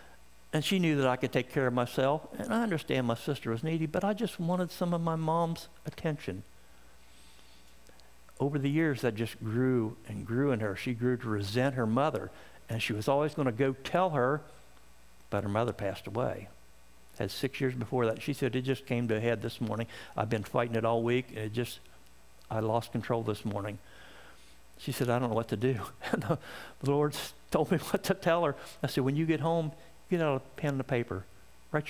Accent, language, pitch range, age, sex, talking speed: American, English, 105-150 Hz, 60-79, male, 215 wpm